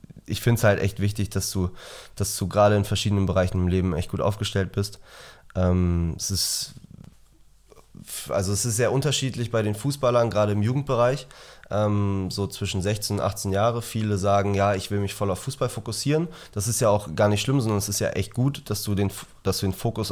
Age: 20-39